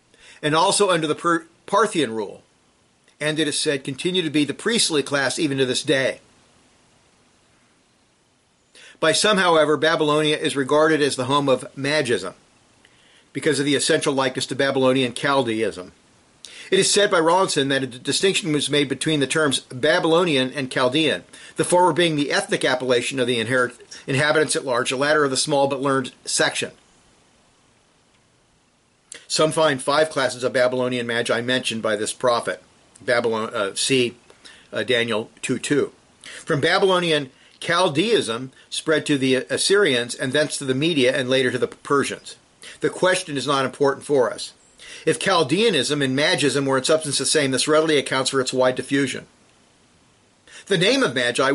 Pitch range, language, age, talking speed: 130-155 Hz, English, 50-69, 160 wpm